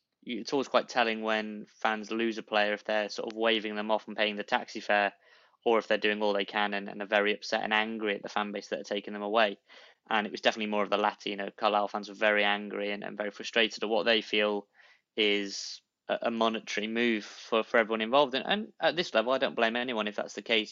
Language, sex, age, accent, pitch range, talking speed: English, male, 20-39, British, 105-120 Hz, 255 wpm